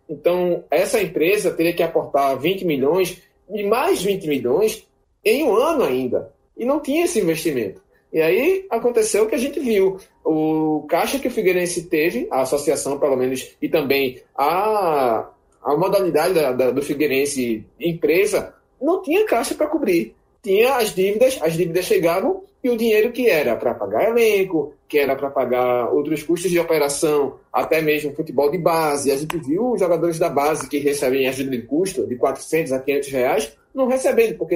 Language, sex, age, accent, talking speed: Portuguese, male, 20-39, Brazilian, 175 wpm